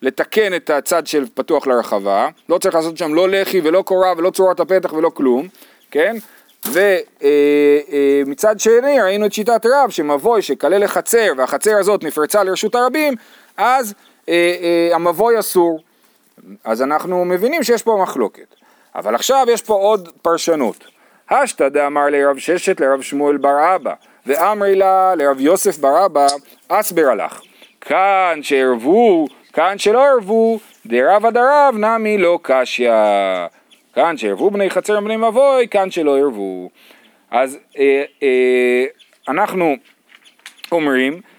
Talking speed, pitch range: 135 wpm, 160-240 Hz